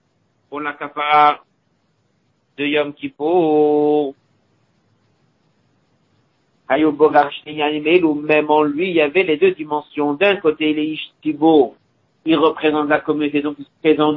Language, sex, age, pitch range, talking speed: French, male, 50-69, 145-155 Hz, 130 wpm